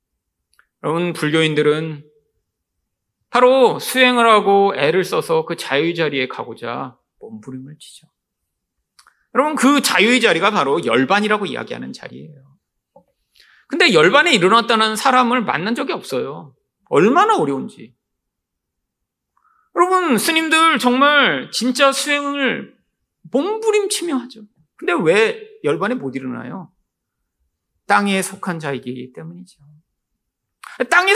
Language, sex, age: Korean, male, 40-59